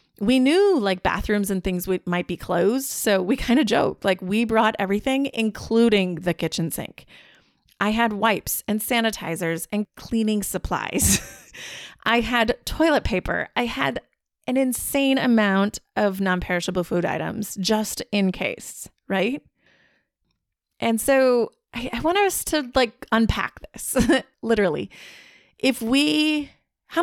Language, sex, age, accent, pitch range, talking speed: English, female, 30-49, American, 185-260 Hz, 135 wpm